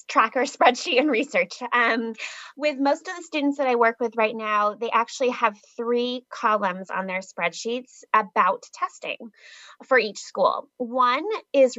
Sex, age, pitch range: female, 20-39, 200-240 Hz